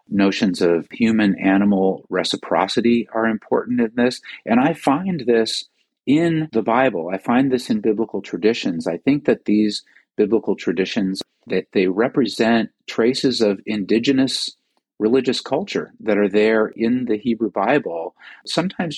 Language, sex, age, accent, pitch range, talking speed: English, male, 50-69, American, 95-120 Hz, 140 wpm